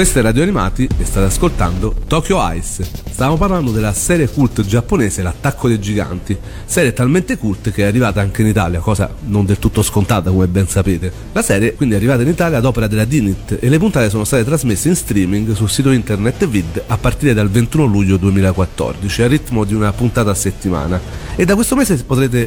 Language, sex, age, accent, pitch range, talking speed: Italian, male, 40-59, native, 95-130 Hz, 205 wpm